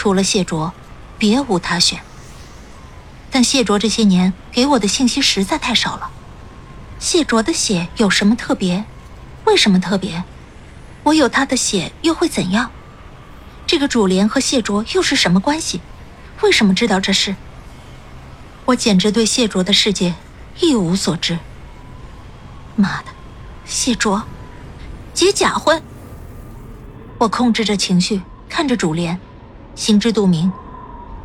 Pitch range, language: 185-260 Hz, Chinese